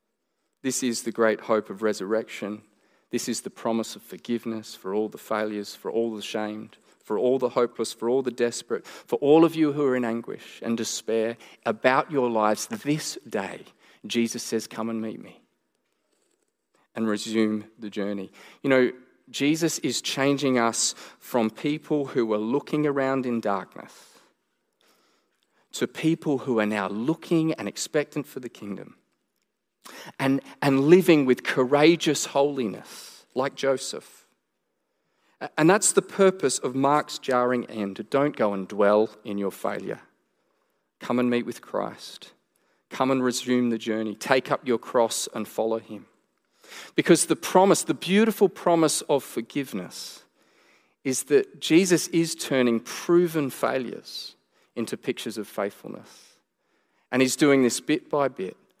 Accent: Australian